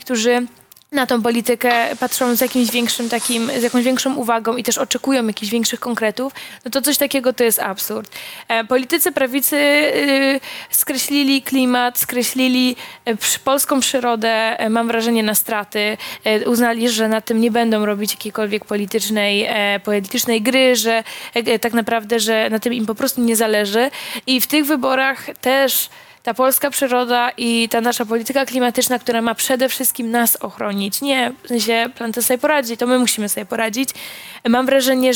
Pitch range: 225-255 Hz